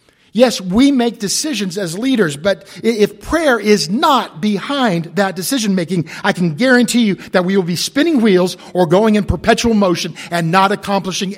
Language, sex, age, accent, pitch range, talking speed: English, male, 50-69, American, 155-205 Hz, 170 wpm